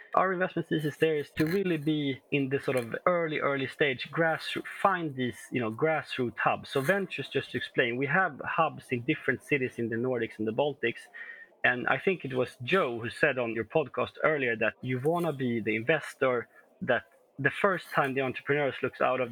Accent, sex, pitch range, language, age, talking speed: Swedish, male, 120-155 Hz, English, 30-49, 210 wpm